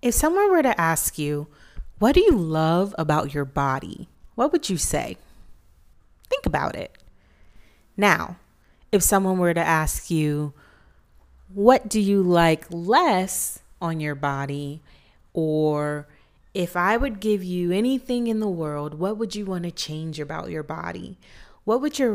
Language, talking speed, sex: English, 155 wpm, female